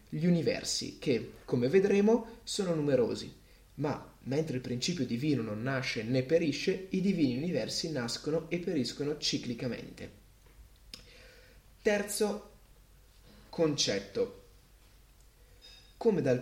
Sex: male